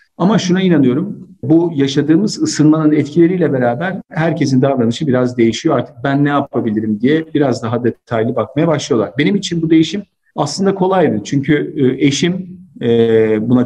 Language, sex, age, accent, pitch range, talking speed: Turkish, male, 50-69, native, 120-150 Hz, 135 wpm